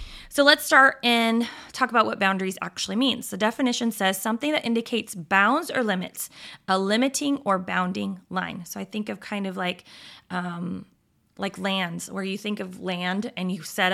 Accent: American